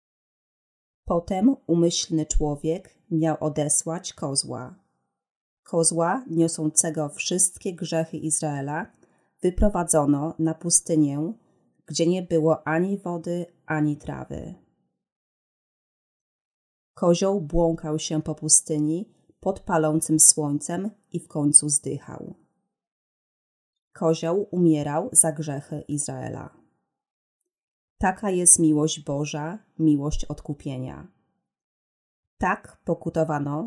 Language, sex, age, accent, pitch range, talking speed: Polish, female, 30-49, native, 150-175 Hz, 80 wpm